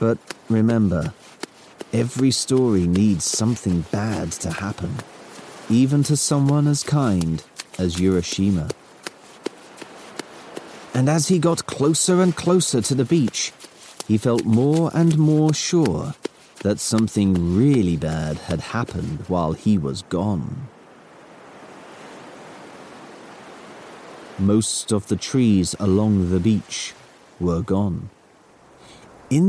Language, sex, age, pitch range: English, male, 30-49, 95-155 Hz